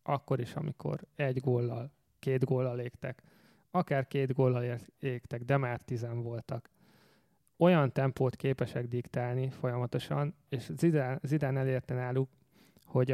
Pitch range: 125-145 Hz